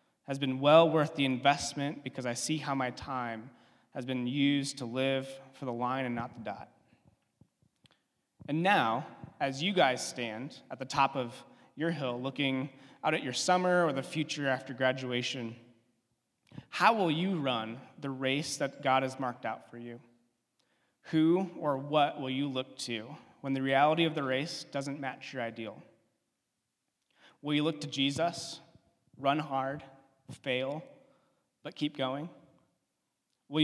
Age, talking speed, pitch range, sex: 20-39, 155 wpm, 125-150 Hz, male